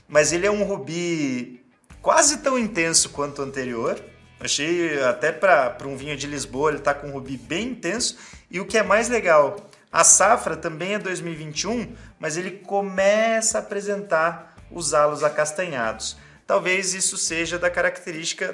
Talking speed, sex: 160 wpm, male